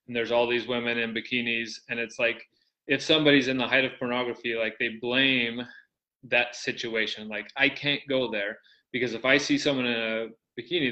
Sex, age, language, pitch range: male, 20-39, English, 115-145 Hz